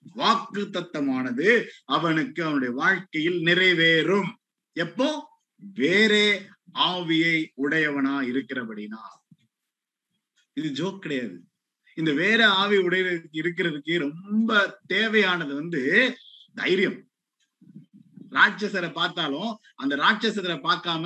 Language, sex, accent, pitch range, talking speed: Tamil, male, native, 160-215 Hz, 80 wpm